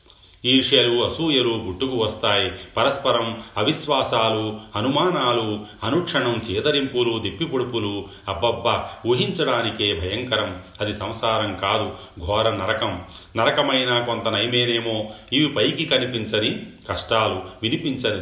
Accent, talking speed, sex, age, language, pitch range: native, 85 wpm, male, 40-59, Telugu, 105-125 Hz